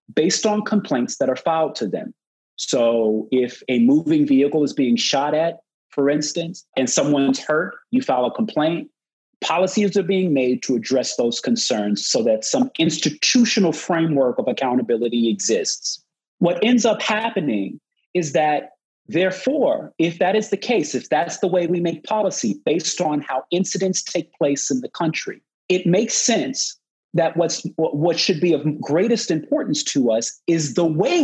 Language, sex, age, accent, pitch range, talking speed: English, male, 30-49, American, 150-220 Hz, 165 wpm